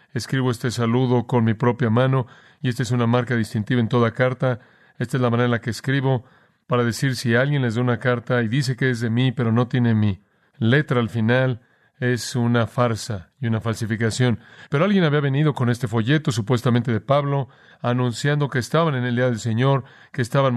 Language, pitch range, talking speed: Spanish, 120-135 Hz, 205 wpm